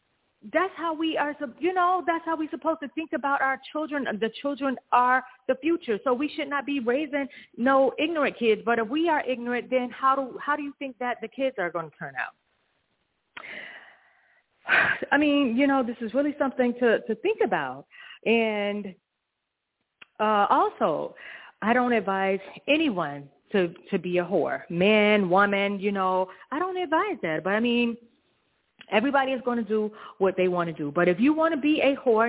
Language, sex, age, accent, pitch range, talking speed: English, female, 40-59, American, 210-305 Hz, 190 wpm